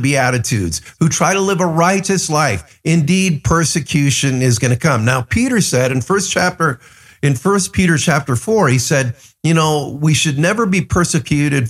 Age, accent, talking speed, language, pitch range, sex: 50-69, American, 180 wpm, English, 115-170 Hz, male